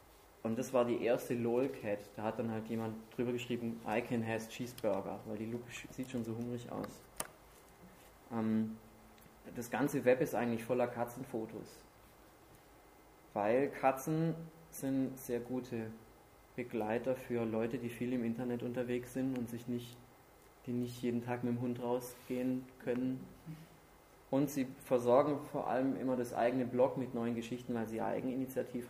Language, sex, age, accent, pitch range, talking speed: German, male, 20-39, German, 110-125 Hz, 145 wpm